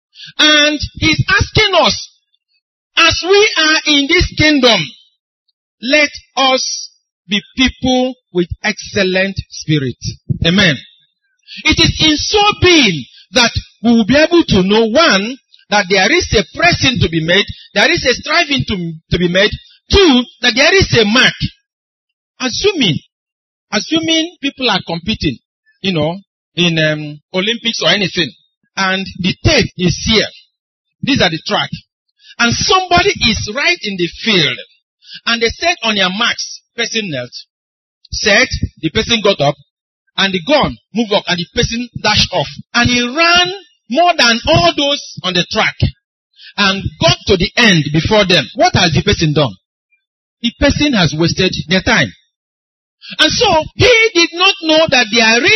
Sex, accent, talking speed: male, Nigerian, 150 wpm